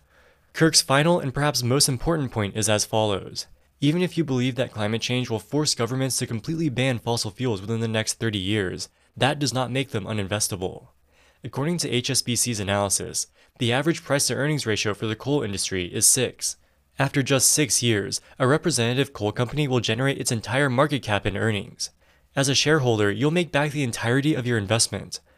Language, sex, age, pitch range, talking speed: English, male, 20-39, 105-135 Hz, 180 wpm